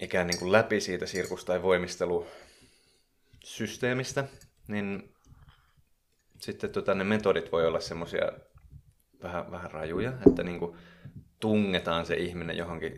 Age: 30-49